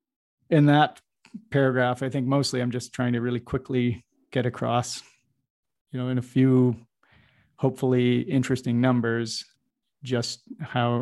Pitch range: 120-140 Hz